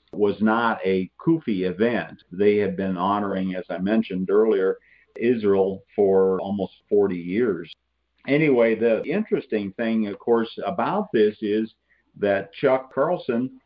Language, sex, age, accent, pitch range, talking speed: English, male, 50-69, American, 100-130 Hz, 130 wpm